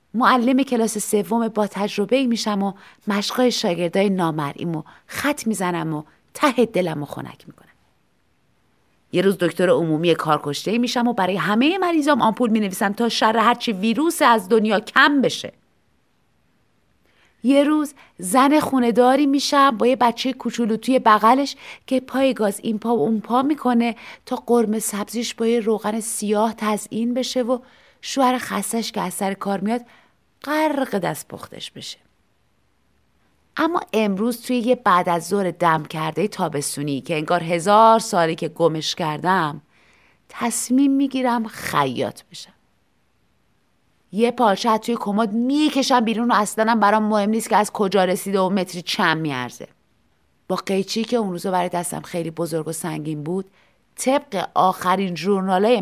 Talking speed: 145 wpm